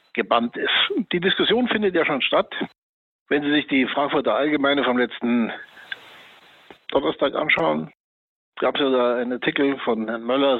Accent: German